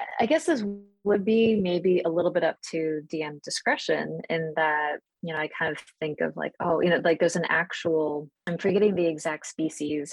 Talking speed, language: 205 wpm, English